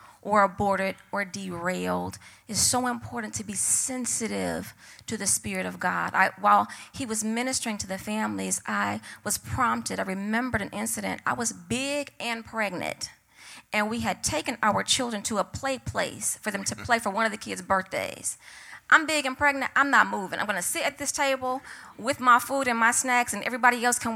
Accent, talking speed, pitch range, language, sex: American, 190 wpm, 205-265 Hz, English, female